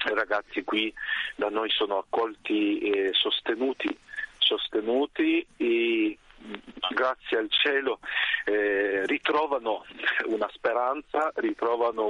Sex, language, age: male, Italian, 40-59